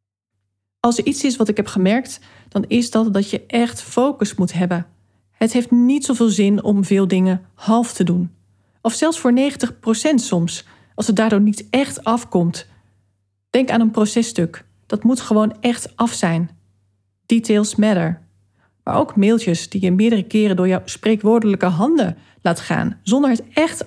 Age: 40-59